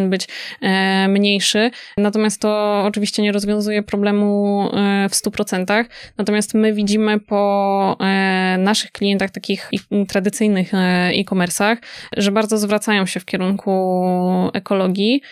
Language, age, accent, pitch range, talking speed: Polish, 10-29, native, 190-210 Hz, 100 wpm